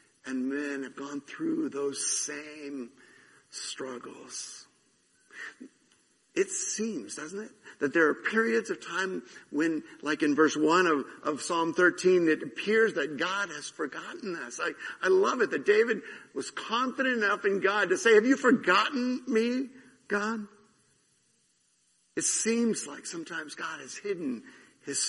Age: 50-69